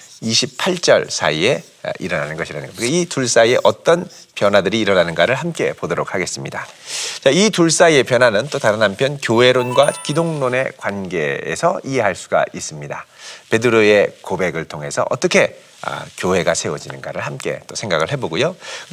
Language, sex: Korean, male